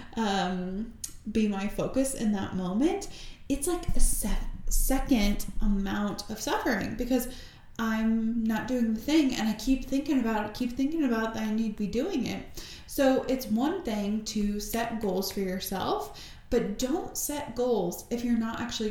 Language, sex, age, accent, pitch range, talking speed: English, female, 20-39, American, 215-275 Hz, 170 wpm